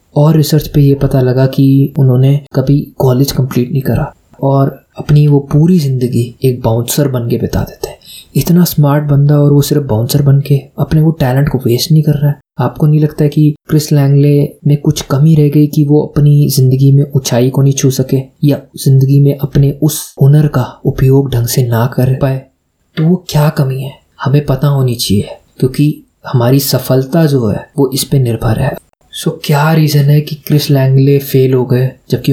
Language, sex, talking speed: Hindi, male, 195 wpm